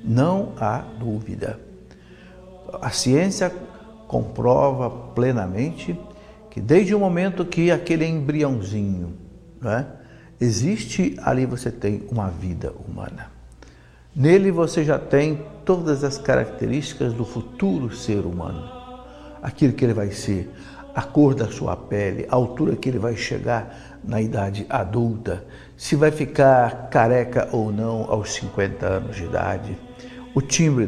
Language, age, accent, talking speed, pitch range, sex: Portuguese, 60-79, Brazilian, 125 wpm, 105-150 Hz, male